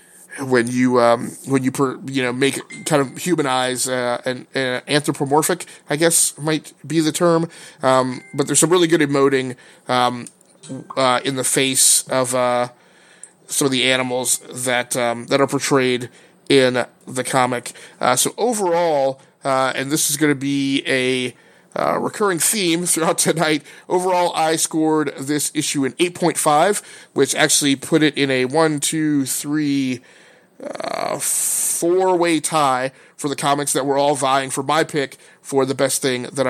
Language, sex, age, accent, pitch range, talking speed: English, male, 30-49, American, 130-170 Hz, 165 wpm